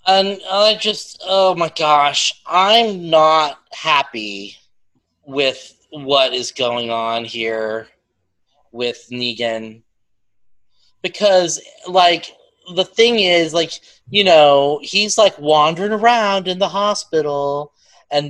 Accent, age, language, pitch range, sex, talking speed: American, 30-49, English, 120-175 Hz, male, 110 wpm